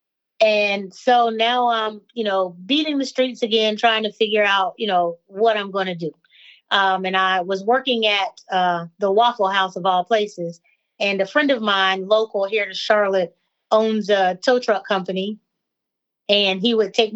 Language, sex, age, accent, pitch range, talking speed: English, female, 30-49, American, 190-230 Hz, 180 wpm